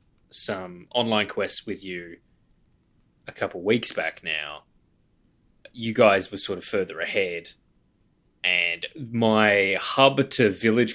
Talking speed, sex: 120 wpm, male